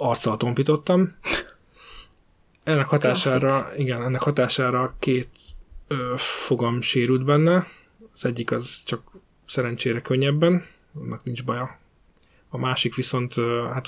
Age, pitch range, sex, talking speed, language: 20-39, 120-145 Hz, male, 95 wpm, Hungarian